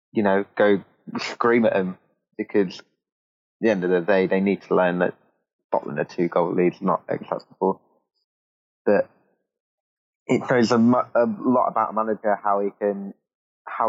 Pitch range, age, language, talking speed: 100-115 Hz, 20-39, English, 175 wpm